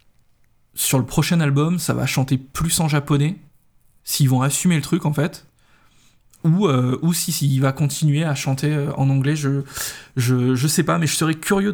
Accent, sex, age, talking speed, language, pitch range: French, male, 20-39, 195 wpm, French, 135-160 Hz